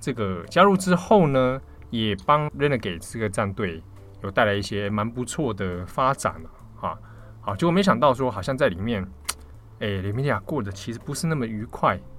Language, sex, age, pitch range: Chinese, male, 20-39, 95-130 Hz